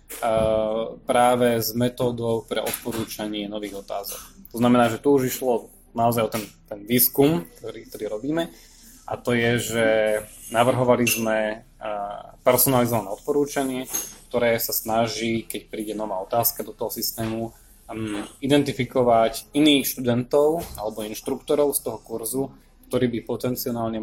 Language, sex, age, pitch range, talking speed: Slovak, male, 20-39, 110-130 Hz, 125 wpm